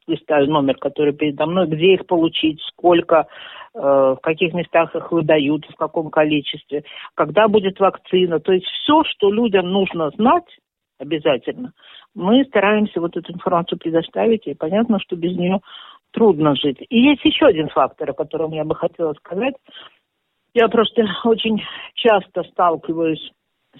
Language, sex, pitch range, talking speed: Russian, female, 160-220 Hz, 145 wpm